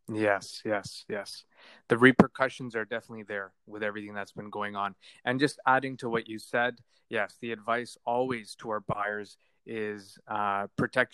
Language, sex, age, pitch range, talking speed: English, male, 20-39, 100-120 Hz, 165 wpm